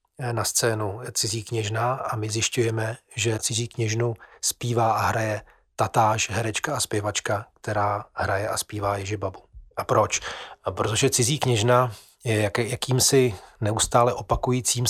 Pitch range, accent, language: 105-120 Hz, native, Czech